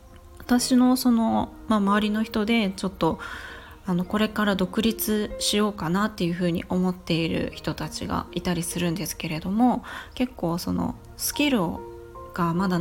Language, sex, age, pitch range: Japanese, female, 20-39, 175-235 Hz